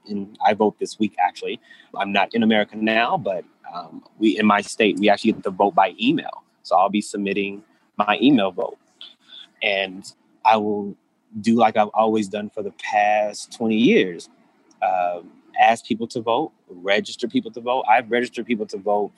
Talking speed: 180 wpm